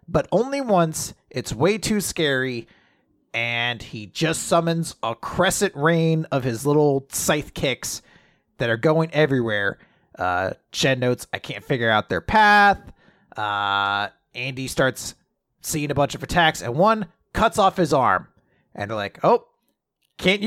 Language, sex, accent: English, male, American